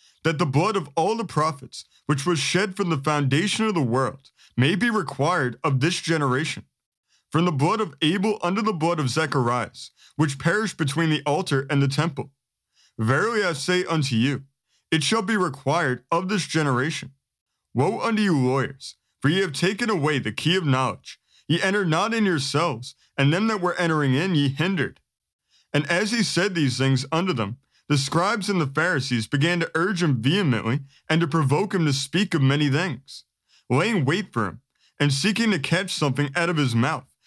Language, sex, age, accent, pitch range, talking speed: English, male, 30-49, American, 135-180 Hz, 190 wpm